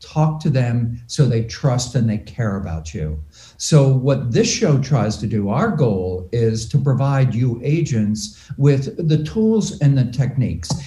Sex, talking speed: male, 170 wpm